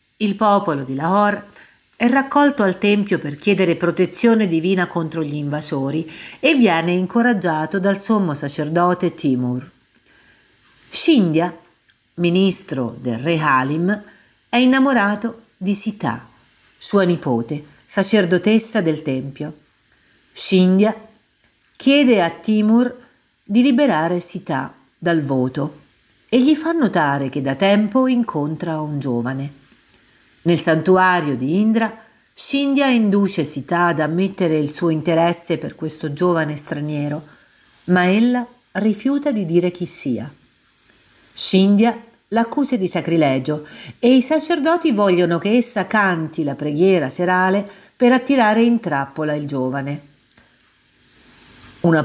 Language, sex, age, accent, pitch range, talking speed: Italian, female, 50-69, native, 155-220 Hz, 115 wpm